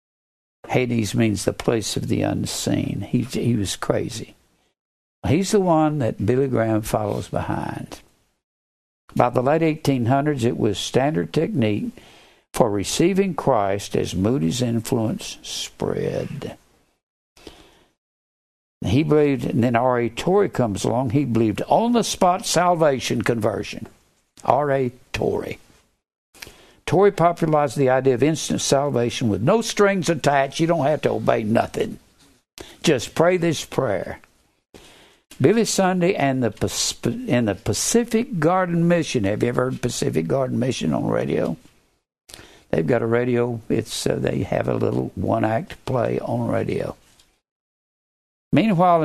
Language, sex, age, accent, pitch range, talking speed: English, male, 60-79, American, 115-165 Hz, 125 wpm